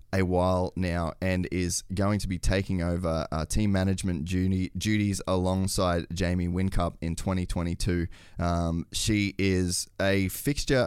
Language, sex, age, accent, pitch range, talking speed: English, male, 20-39, Australian, 85-100 Hz, 140 wpm